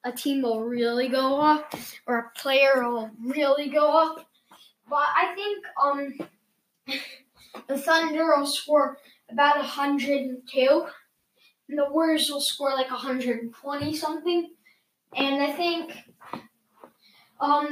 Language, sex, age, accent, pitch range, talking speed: English, female, 10-29, American, 265-325 Hz, 135 wpm